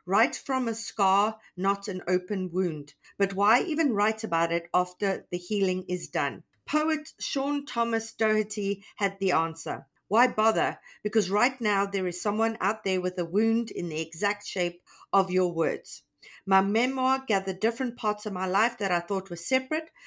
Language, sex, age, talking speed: English, female, 50-69, 175 wpm